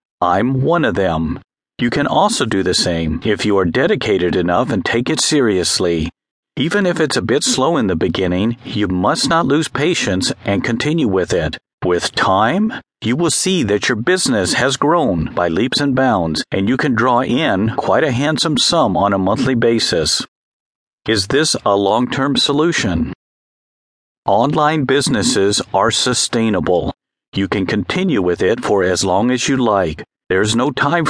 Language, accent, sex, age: English, American, male, 50-69